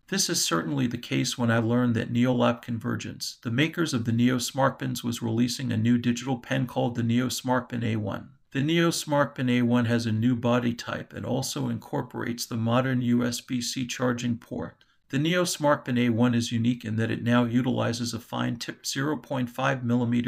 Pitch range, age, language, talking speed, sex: 120-130 Hz, 50-69, English, 180 wpm, male